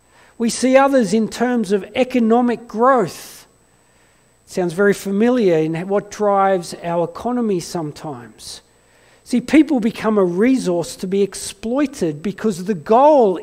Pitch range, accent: 185-245 Hz, Australian